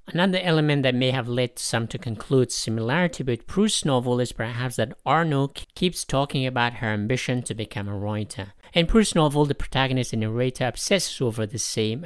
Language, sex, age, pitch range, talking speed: English, male, 50-69, 110-140 Hz, 185 wpm